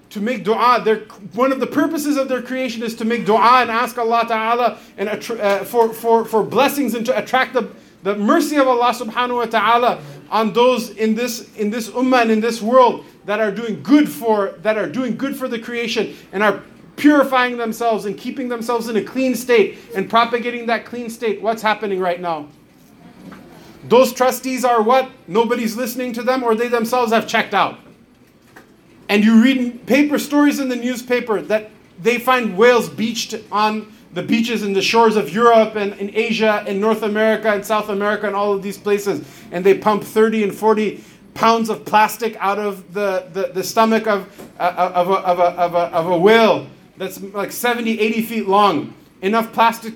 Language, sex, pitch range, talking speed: English, male, 205-245 Hz, 185 wpm